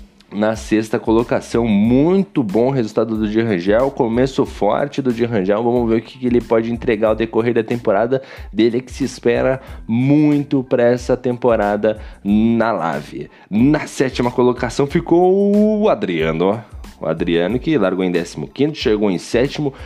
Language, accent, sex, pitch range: Portuguese, Brazilian, male, 115-150 Hz